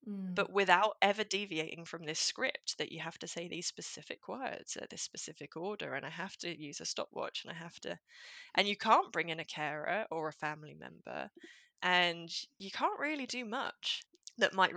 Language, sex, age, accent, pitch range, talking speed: English, female, 20-39, British, 165-210 Hz, 205 wpm